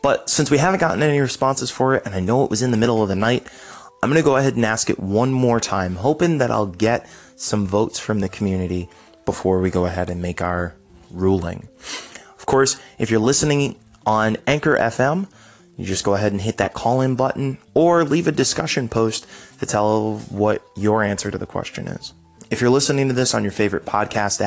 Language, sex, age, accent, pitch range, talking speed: English, male, 20-39, American, 100-135 Hz, 215 wpm